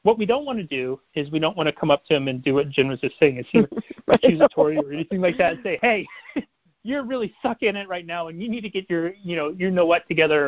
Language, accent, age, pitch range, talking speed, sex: English, American, 30-49, 145-185 Hz, 300 wpm, male